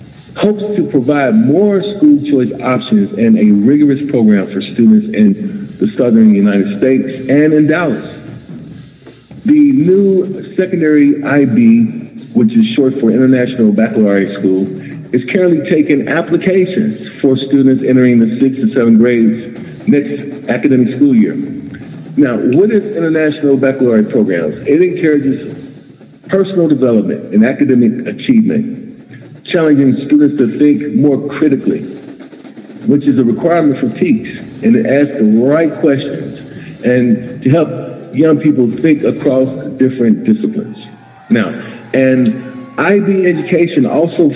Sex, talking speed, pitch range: male, 125 wpm, 125-180 Hz